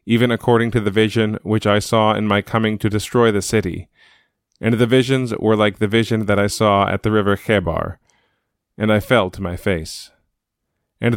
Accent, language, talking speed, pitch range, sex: American, English, 195 wpm, 95-110 Hz, male